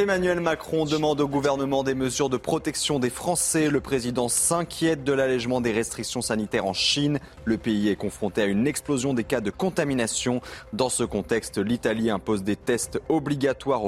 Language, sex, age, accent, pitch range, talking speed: French, male, 20-39, French, 110-150 Hz, 175 wpm